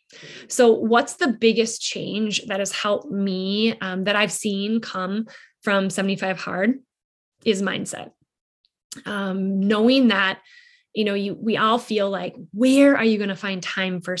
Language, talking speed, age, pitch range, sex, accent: English, 155 wpm, 20-39, 190-225 Hz, female, American